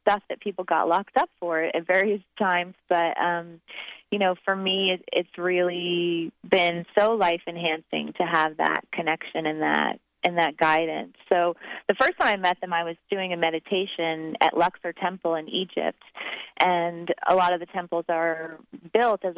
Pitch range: 165-190 Hz